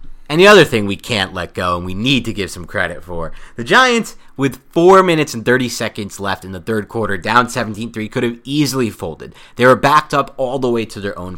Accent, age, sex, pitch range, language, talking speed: American, 30-49, male, 100-135 Hz, English, 235 wpm